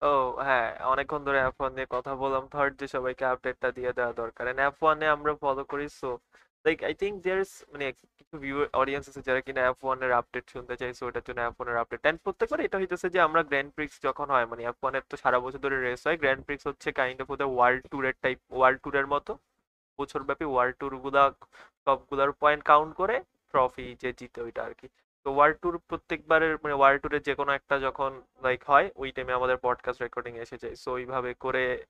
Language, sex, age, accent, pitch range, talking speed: Bengali, male, 20-39, native, 125-145 Hz, 105 wpm